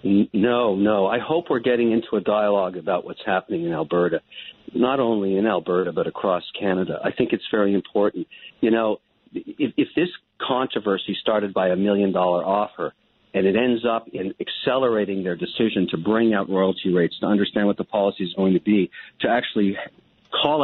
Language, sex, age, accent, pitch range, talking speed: English, male, 50-69, American, 100-145 Hz, 185 wpm